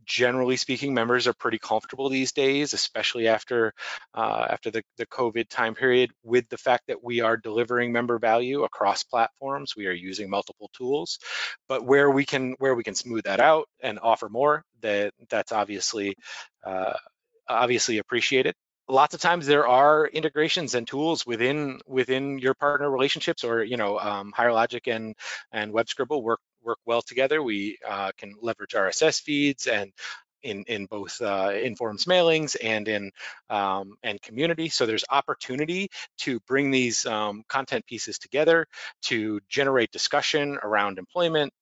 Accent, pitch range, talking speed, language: American, 110-140 Hz, 160 wpm, English